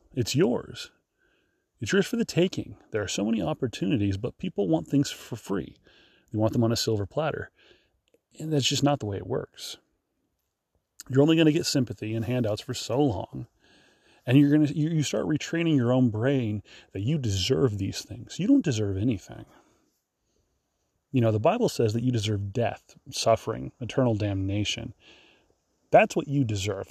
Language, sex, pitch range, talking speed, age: English, male, 105-150 Hz, 175 wpm, 30-49